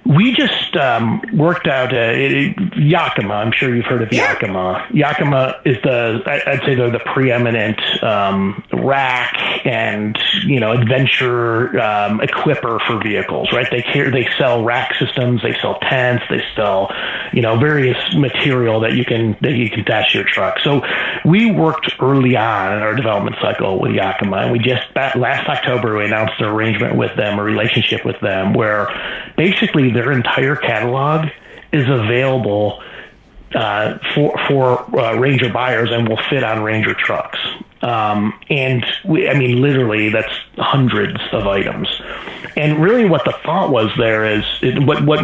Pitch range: 110-135 Hz